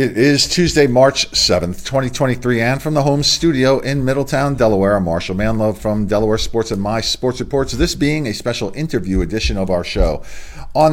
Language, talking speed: English, 185 wpm